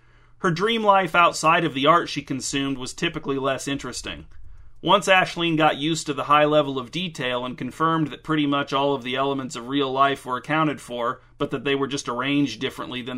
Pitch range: 135-160 Hz